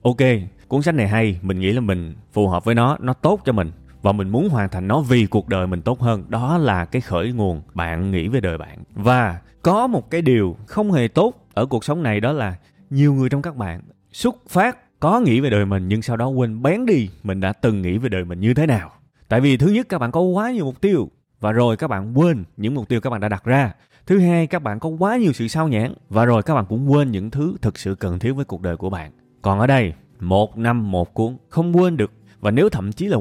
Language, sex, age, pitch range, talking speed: Vietnamese, male, 20-39, 100-150 Hz, 265 wpm